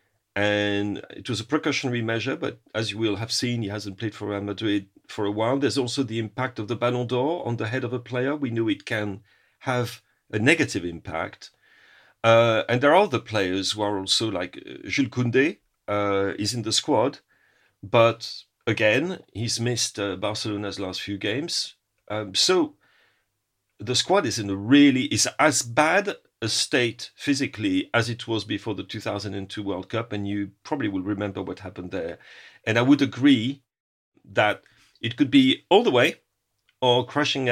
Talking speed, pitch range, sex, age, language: 180 wpm, 105-125 Hz, male, 40-59, English